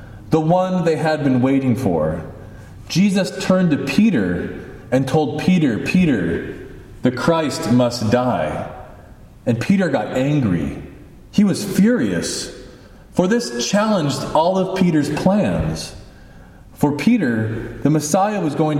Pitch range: 115-165 Hz